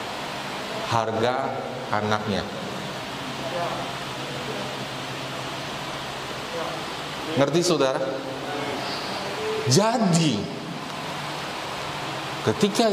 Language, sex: Indonesian, male